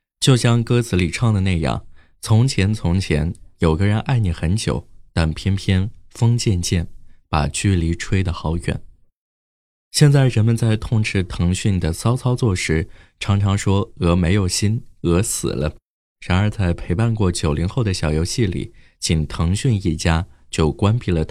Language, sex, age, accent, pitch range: Chinese, male, 20-39, native, 85-115 Hz